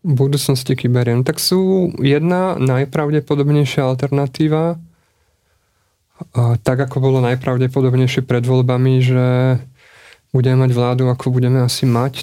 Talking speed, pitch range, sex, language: 110 wpm, 125-140 Hz, male, Slovak